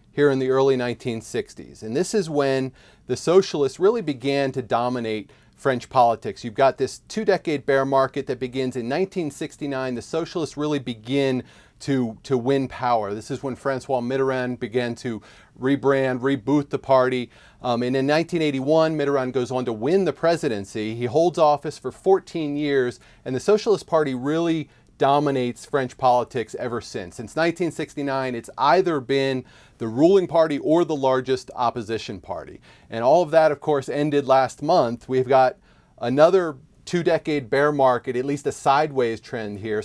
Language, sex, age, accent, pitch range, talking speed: English, male, 30-49, American, 120-145 Hz, 165 wpm